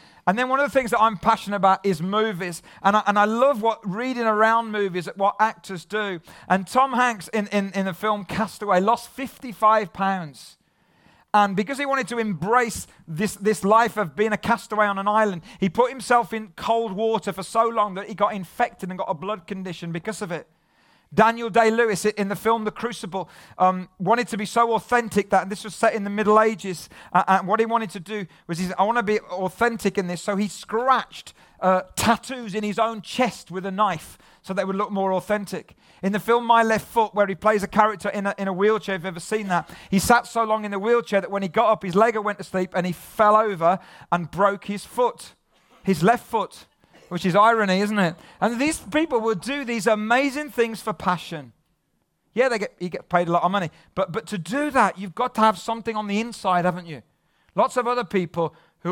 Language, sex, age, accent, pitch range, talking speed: English, male, 40-59, British, 190-225 Hz, 225 wpm